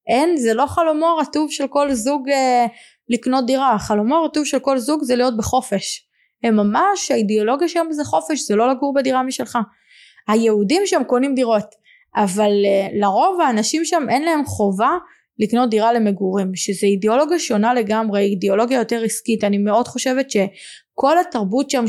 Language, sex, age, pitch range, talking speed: Hebrew, female, 20-39, 210-295 Hz, 155 wpm